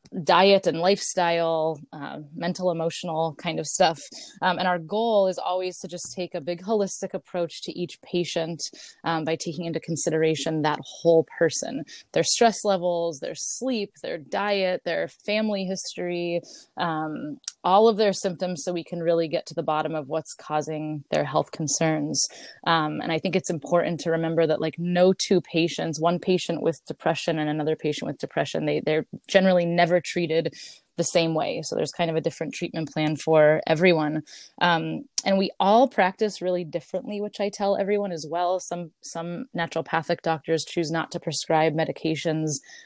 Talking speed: 175 wpm